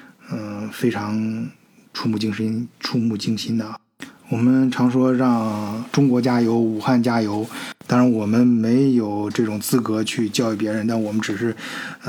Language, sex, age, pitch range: Chinese, male, 20-39, 110-130 Hz